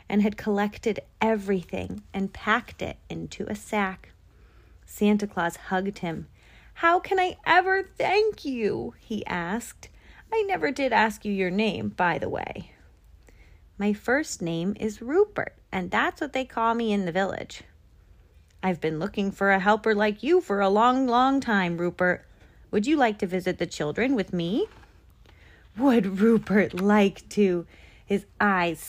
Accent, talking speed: American, 155 wpm